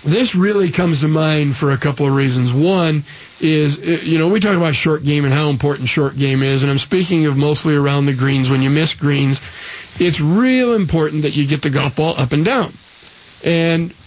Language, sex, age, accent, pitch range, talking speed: English, male, 50-69, American, 145-190 Hz, 215 wpm